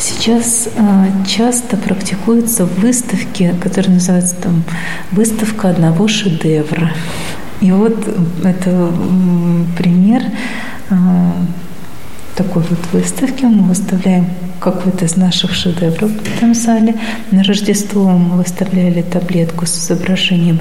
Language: Russian